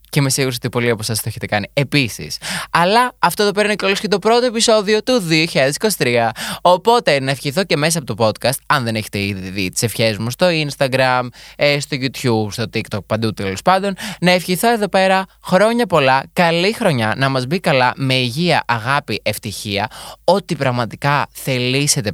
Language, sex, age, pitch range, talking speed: Greek, male, 20-39, 115-170 Hz, 185 wpm